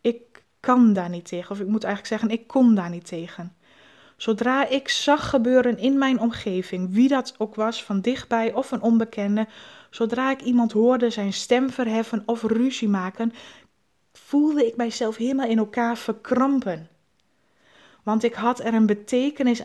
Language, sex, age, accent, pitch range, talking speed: Dutch, female, 20-39, Dutch, 215-250 Hz, 160 wpm